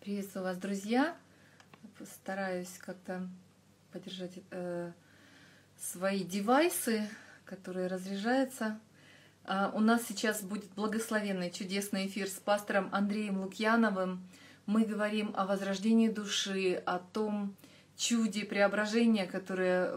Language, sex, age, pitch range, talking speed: Russian, female, 30-49, 190-220 Hz, 100 wpm